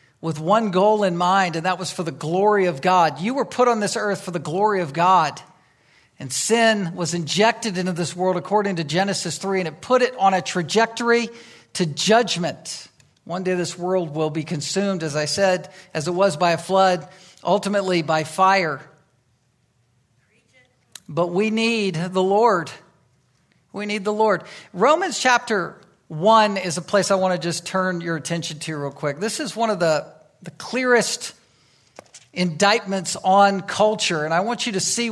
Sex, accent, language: male, American, English